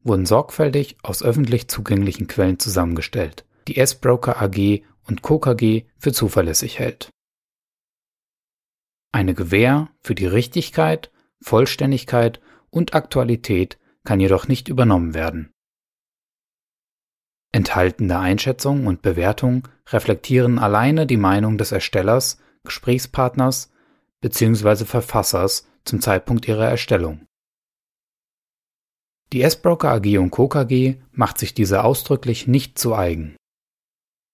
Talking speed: 100 wpm